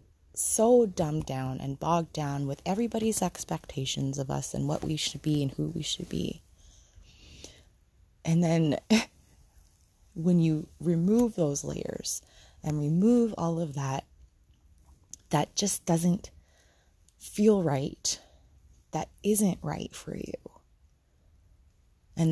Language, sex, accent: English, female, American